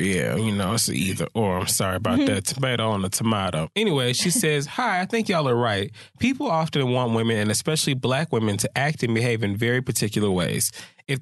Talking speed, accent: 215 wpm, American